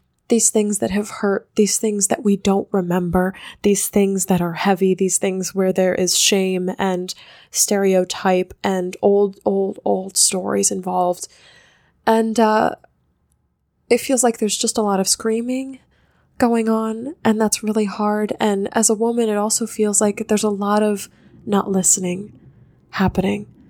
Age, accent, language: 10-29, American, English